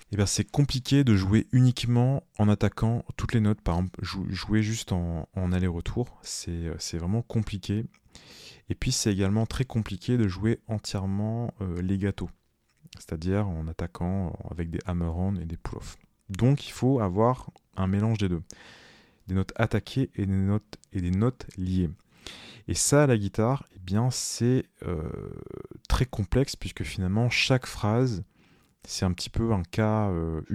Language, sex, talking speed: French, male, 165 wpm